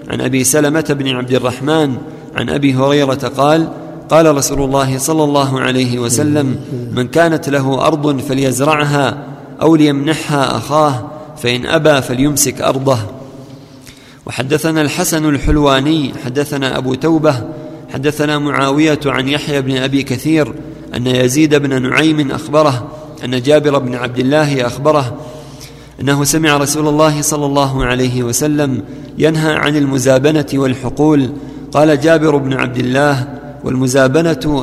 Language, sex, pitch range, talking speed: Arabic, male, 130-150 Hz, 125 wpm